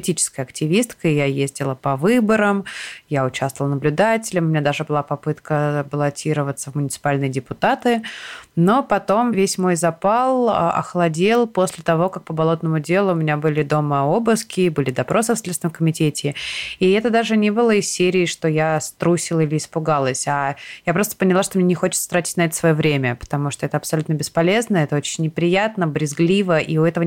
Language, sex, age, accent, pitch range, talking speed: Russian, female, 20-39, native, 155-185 Hz, 170 wpm